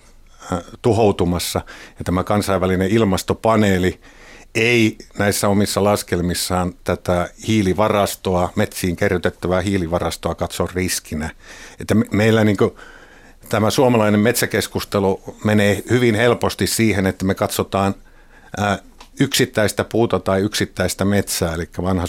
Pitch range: 85-105 Hz